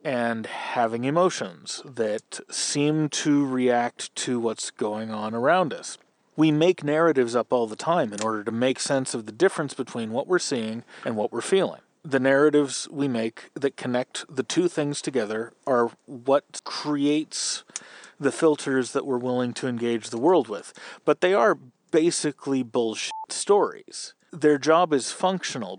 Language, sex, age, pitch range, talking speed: English, male, 40-59, 120-155 Hz, 160 wpm